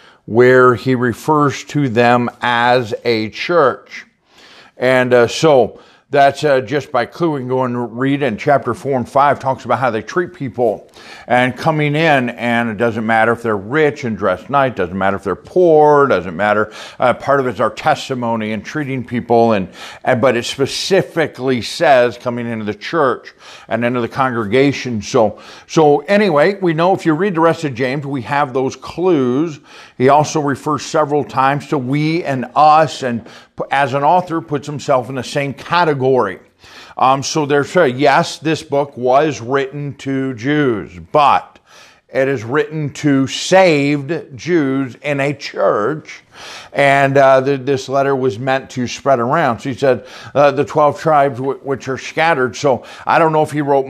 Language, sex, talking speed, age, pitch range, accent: English, male, 185 wpm, 50-69, 125-150 Hz, American